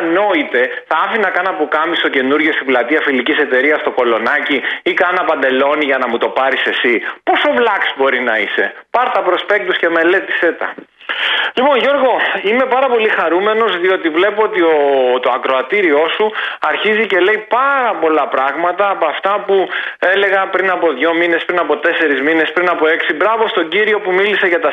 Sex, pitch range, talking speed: male, 155-230 Hz, 170 wpm